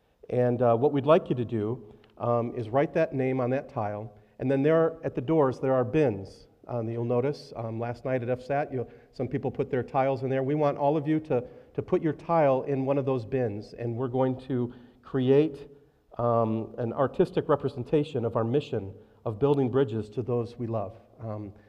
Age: 40-59